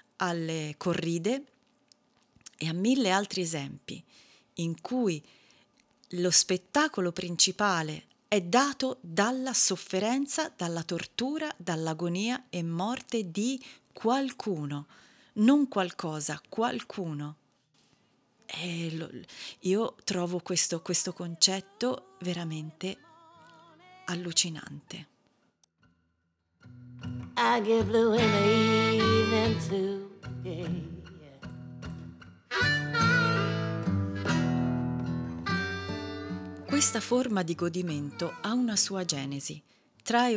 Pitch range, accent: 160-215 Hz, native